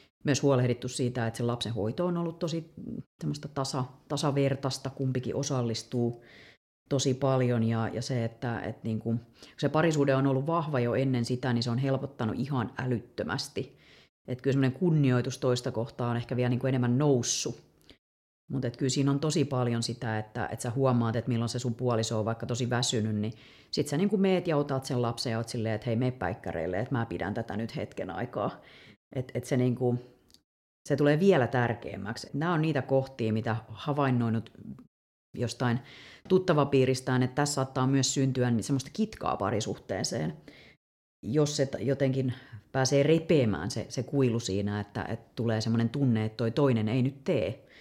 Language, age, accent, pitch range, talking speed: Finnish, 40-59, native, 115-135 Hz, 170 wpm